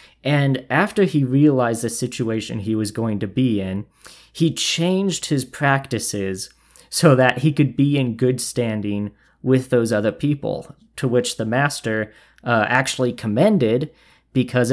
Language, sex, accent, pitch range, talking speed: English, male, American, 110-140 Hz, 145 wpm